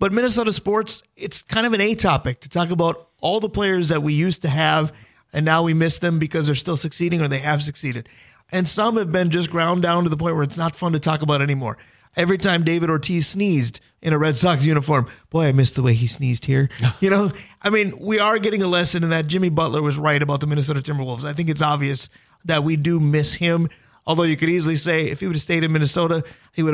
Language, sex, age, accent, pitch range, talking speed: English, male, 30-49, American, 145-180 Hz, 250 wpm